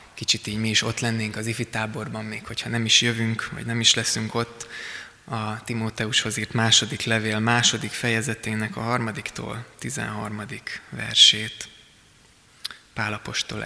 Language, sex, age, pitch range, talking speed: Hungarian, male, 20-39, 110-120 Hz, 130 wpm